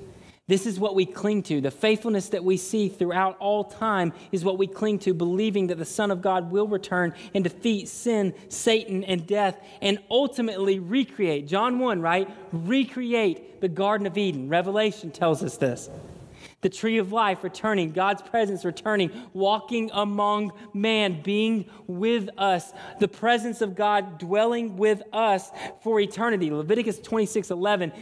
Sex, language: male, English